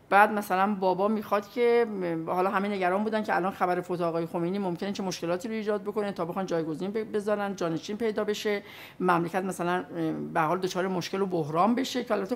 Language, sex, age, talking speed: Persian, female, 50-69, 185 wpm